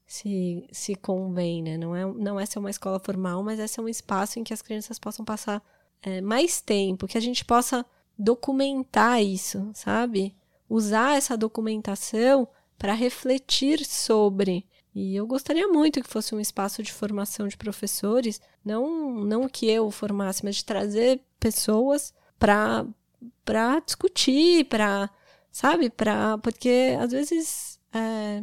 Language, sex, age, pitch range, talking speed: Portuguese, female, 10-29, 200-260 Hz, 150 wpm